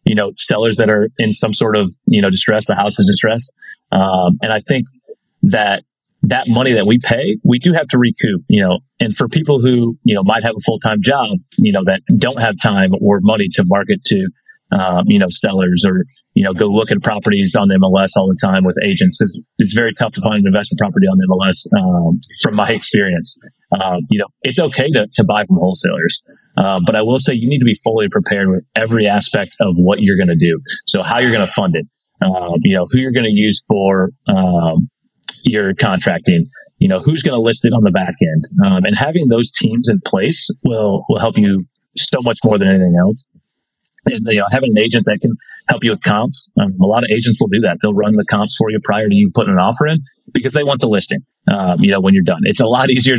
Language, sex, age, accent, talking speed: English, male, 30-49, American, 245 wpm